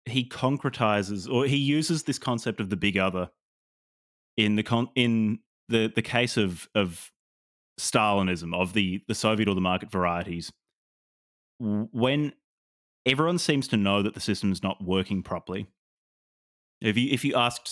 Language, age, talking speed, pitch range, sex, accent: English, 30-49, 155 wpm, 95-115 Hz, male, Australian